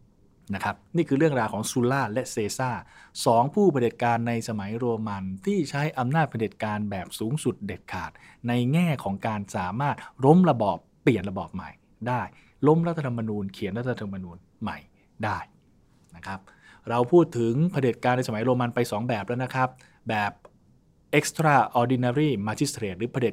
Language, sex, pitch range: English, male, 110-155 Hz